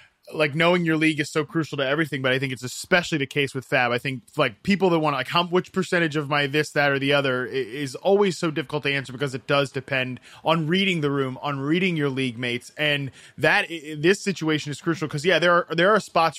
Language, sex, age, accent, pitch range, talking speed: English, male, 20-39, American, 140-185 Hz, 250 wpm